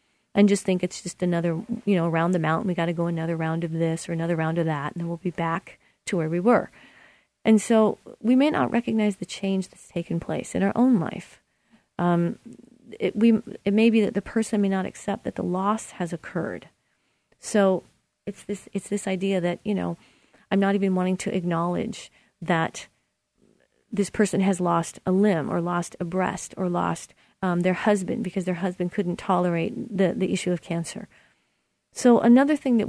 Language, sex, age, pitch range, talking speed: English, female, 40-59, 180-220 Hz, 200 wpm